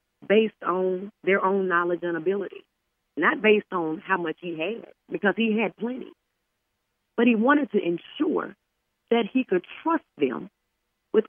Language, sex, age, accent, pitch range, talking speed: English, female, 40-59, American, 165-235 Hz, 155 wpm